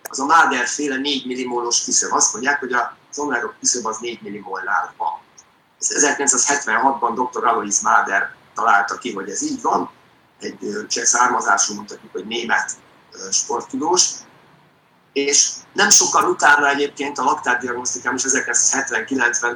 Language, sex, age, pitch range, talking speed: Hungarian, male, 50-69, 125-155 Hz, 130 wpm